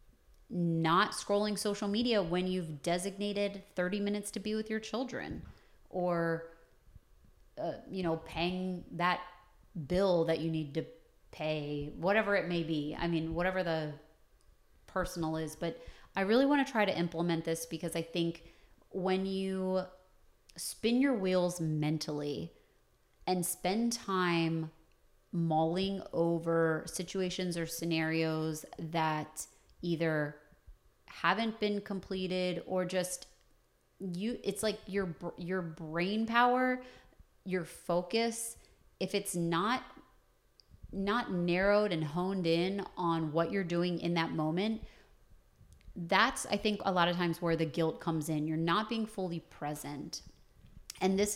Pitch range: 165-200 Hz